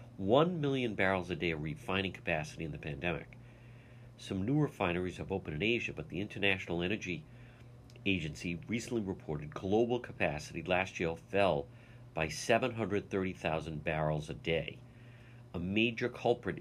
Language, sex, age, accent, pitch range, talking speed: English, male, 50-69, American, 100-120 Hz, 135 wpm